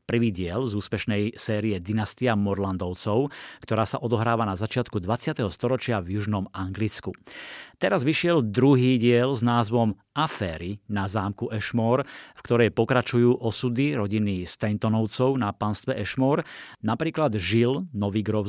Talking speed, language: 130 wpm, Slovak